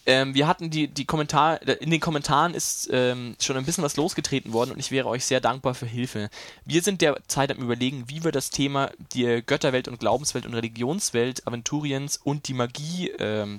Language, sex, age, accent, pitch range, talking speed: German, male, 20-39, German, 120-145 Hz, 200 wpm